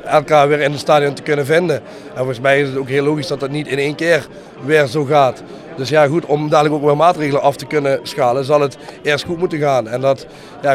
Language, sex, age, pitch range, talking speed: Dutch, male, 30-49, 135-150 Hz, 255 wpm